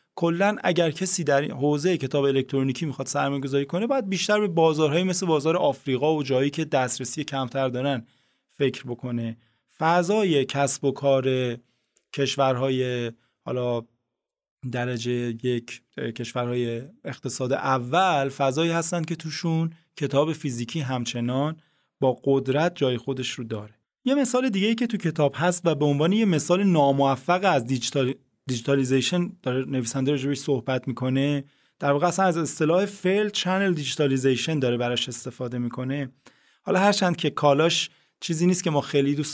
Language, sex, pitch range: Persian, male, 130-175 Hz